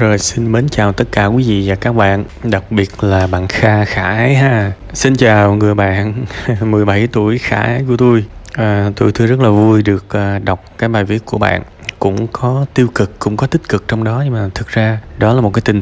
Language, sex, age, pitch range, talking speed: Vietnamese, male, 20-39, 100-130 Hz, 225 wpm